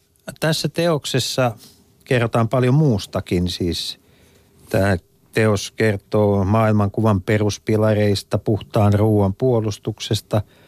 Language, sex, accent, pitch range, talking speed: Finnish, male, native, 110-155 Hz, 80 wpm